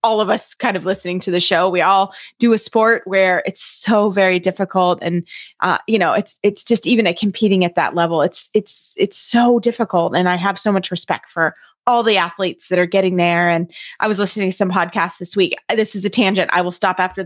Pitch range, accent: 185-230 Hz, American